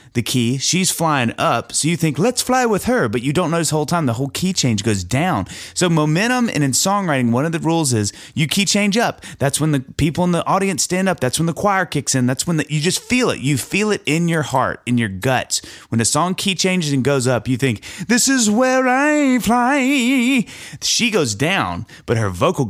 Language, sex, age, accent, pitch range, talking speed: English, male, 30-49, American, 110-180 Hz, 240 wpm